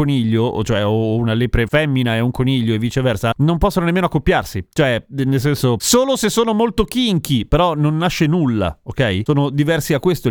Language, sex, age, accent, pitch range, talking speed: Italian, male, 30-49, native, 125-175 Hz, 185 wpm